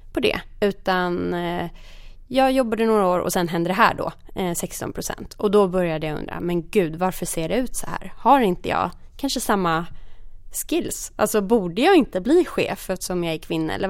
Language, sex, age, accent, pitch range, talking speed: Swedish, female, 20-39, native, 175-255 Hz, 190 wpm